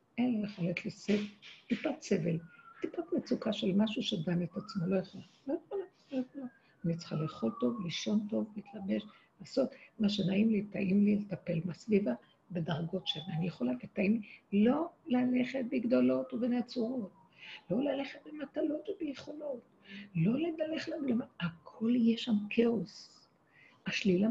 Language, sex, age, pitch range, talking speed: Hebrew, female, 60-79, 175-245 Hz, 135 wpm